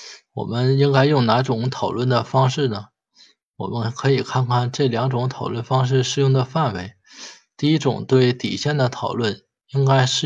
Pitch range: 115-135 Hz